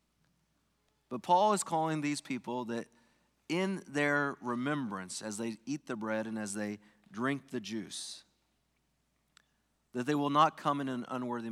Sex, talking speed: male, 150 wpm